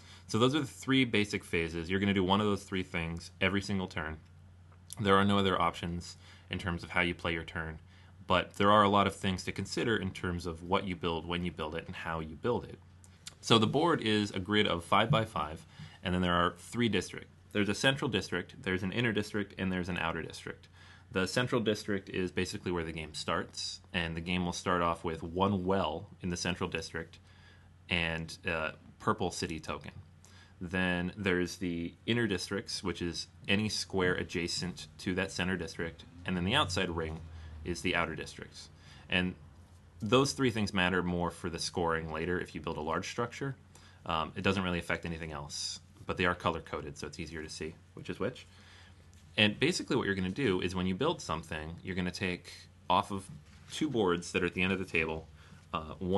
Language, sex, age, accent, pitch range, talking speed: English, male, 30-49, American, 85-95 Hz, 215 wpm